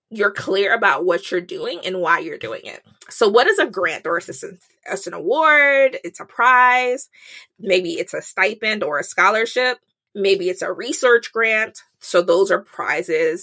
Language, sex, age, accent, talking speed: English, female, 20-39, American, 180 wpm